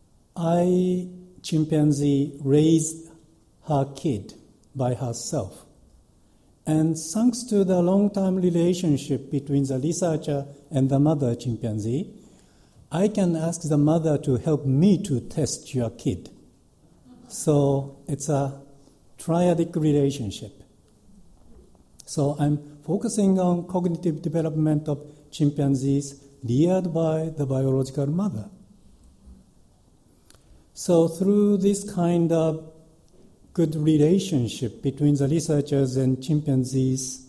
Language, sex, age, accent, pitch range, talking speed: English, male, 60-79, Japanese, 140-180 Hz, 100 wpm